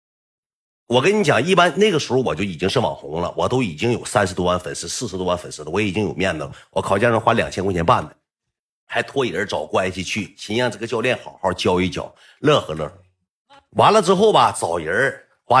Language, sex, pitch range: Chinese, male, 90-140 Hz